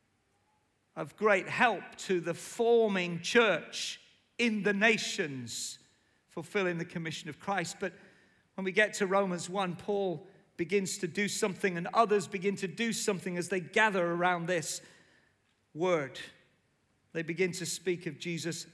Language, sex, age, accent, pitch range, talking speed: English, male, 40-59, British, 170-220 Hz, 145 wpm